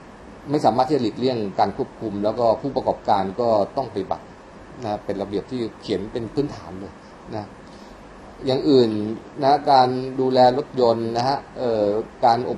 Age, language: 20-39, Thai